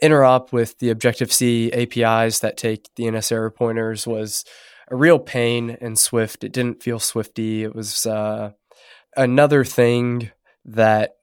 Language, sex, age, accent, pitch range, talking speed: English, male, 20-39, American, 110-125 Hz, 145 wpm